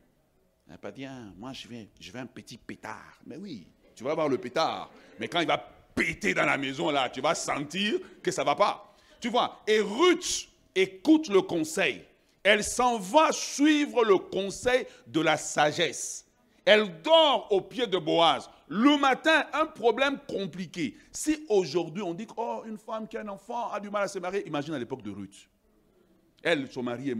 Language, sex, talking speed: French, male, 195 wpm